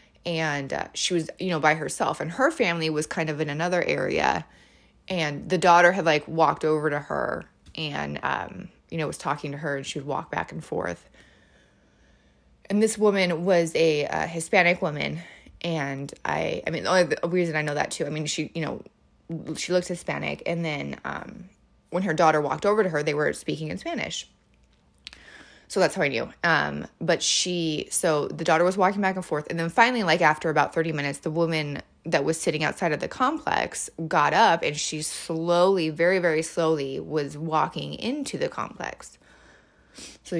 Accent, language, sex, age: American, English, female, 20-39